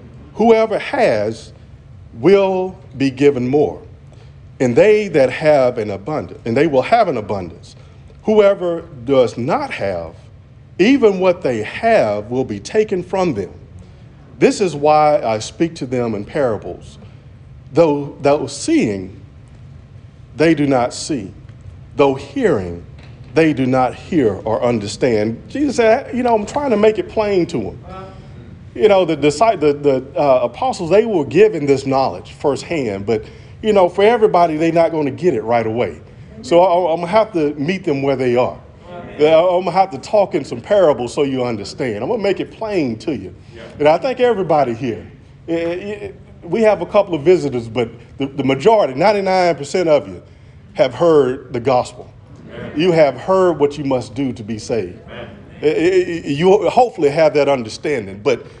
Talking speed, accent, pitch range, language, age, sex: 165 wpm, American, 120-190 Hz, English, 40-59, male